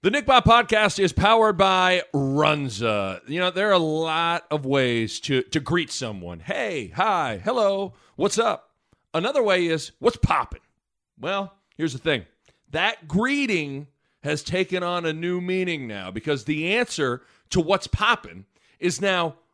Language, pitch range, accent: English, 120-175 Hz, American